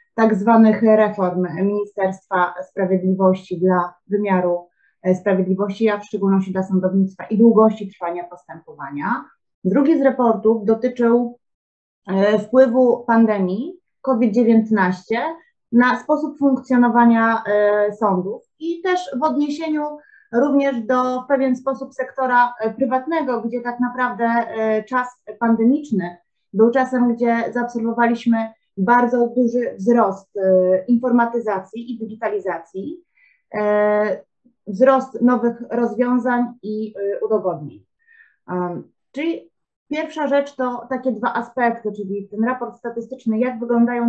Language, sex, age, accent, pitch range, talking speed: English, female, 30-49, Polish, 200-250 Hz, 105 wpm